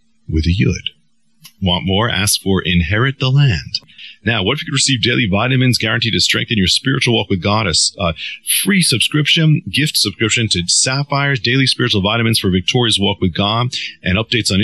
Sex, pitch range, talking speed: male, 95-130 Hz, 180 wpm